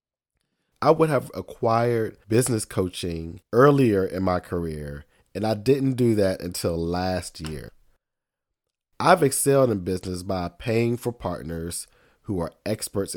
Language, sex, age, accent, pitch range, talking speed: English, male, 40-59, American, 85-130 Hz, 130 wpm